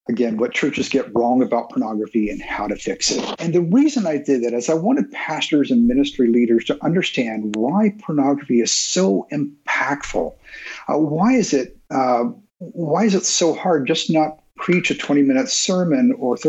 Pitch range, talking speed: 130-220 Hz, 180 wpm